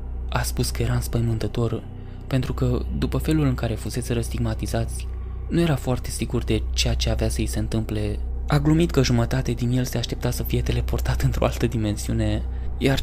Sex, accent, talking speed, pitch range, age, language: male, native, 175 wpm, 95-125 Hz, 20-39, Romanian